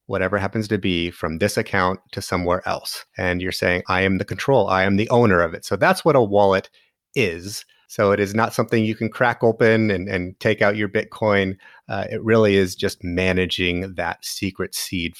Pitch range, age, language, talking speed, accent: 95-120 Hz, 30-49, English, 210 wpm, American